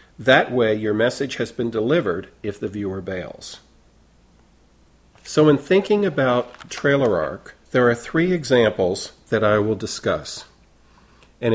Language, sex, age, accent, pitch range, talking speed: English, male, 50-69, American, 95-125 Hz, 135 wpm